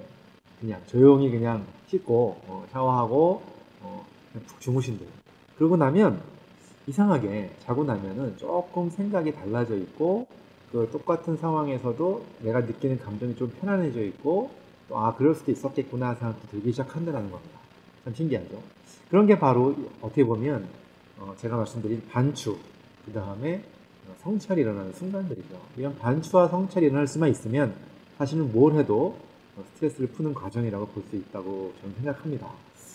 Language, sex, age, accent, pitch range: Korean, male, 40-59, native, 115-165 Hz